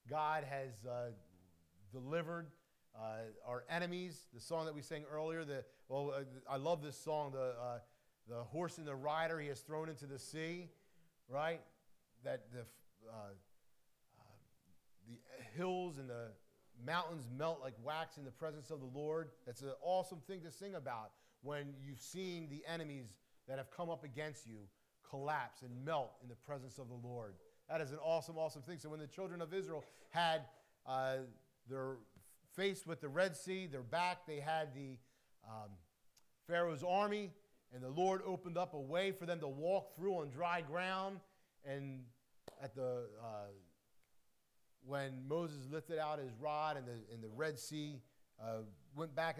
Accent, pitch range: American, 125-165 Hz